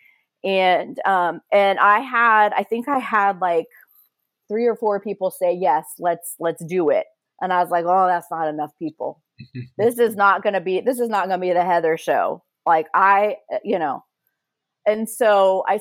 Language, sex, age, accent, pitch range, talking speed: English, female, 30-49, American, 170-210 Hz, 195 wpm